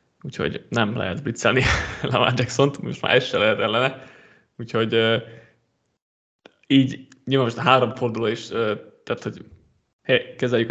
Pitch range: 120-140 Hz